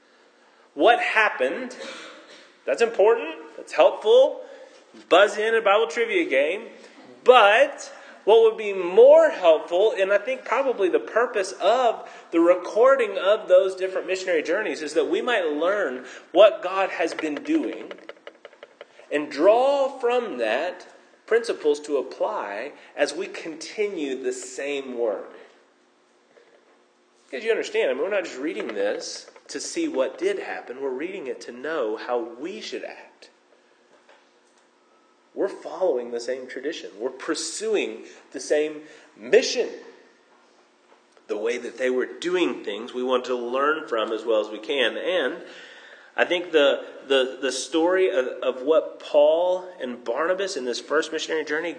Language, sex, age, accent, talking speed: English, male, 30-49, American, 145 wpm